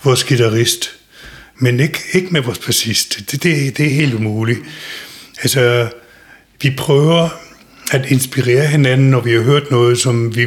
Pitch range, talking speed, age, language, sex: 115-135 Hz, 155 wpm, 60-79, Danish, male